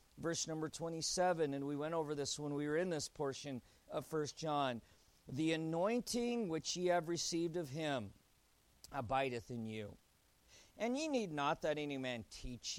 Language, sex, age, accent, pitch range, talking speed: English, male, 50-69, American, 135-195 Hz, 170 wpm